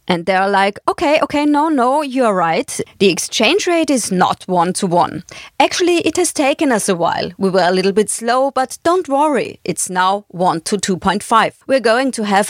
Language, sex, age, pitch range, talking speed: English, female, 30-49, 190-265 Hz, 200 wpm